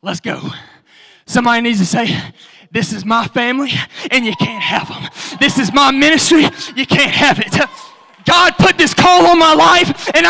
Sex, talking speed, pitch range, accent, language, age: male, 180 wpm, 280-385 Hz, American, English, 20-39